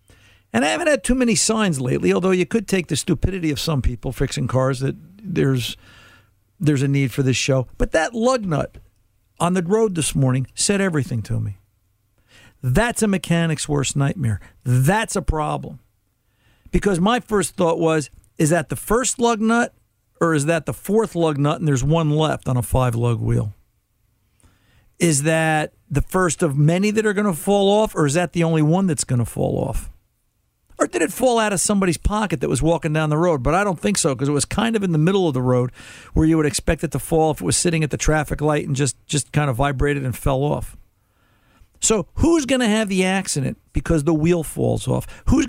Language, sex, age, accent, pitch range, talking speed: English, male, 50-69, American, 125-185 Hz, 220 wpm